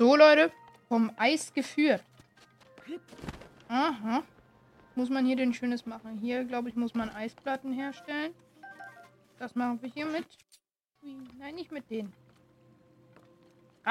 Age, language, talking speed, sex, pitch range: 20-39, German, 120 wpm, female, 230-295 Hz